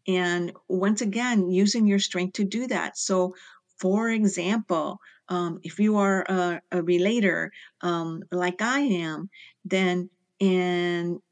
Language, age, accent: English, 50-69, American